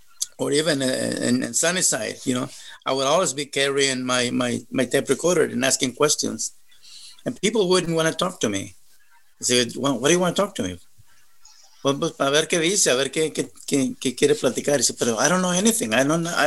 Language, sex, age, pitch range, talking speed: English, male, 50-69, 145-215 Hz, 160 wpm